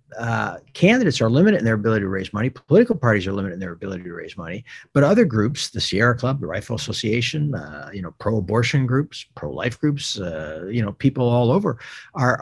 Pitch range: 110-145 Hz